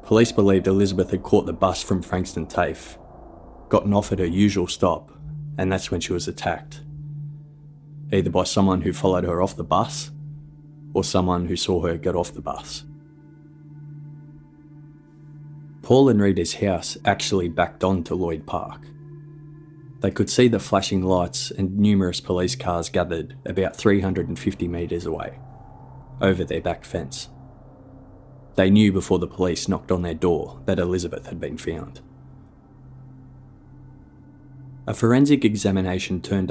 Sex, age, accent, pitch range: male, 20-39, Australian, 90-130 Hz